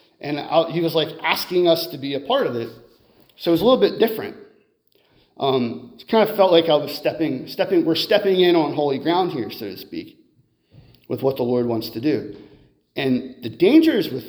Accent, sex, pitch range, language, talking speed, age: American, male, 135-170 Hz, English, 210 wpm, 40-59